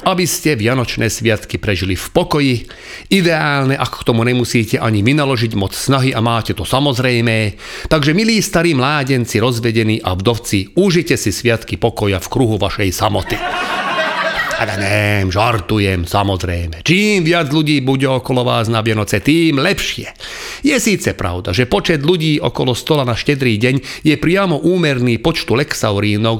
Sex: male